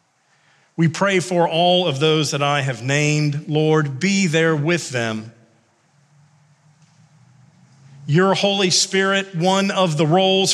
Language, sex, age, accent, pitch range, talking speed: English, male, 40-59, American, 155-190 Hz, 125 wpm